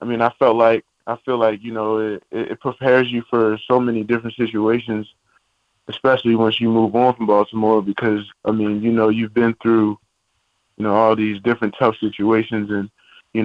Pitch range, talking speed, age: 105-115 Hz, 190 wpm, 20-39